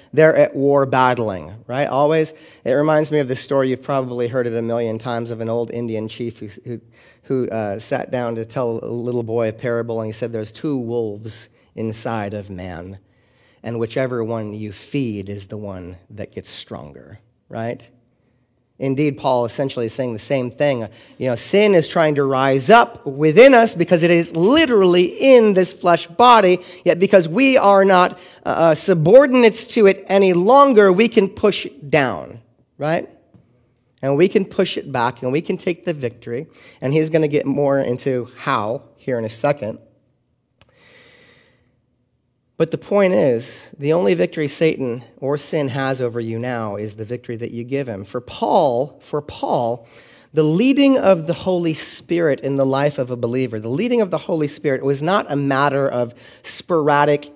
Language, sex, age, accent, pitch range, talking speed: English, male, 30-49, American, 120-165 Hz, 180 wpm